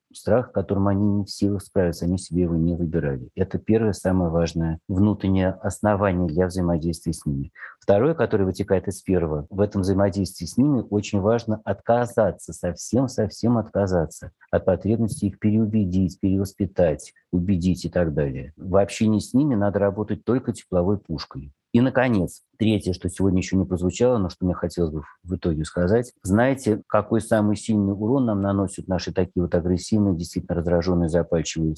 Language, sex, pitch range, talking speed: Russian, male, 90-105 Hz, 160 wpm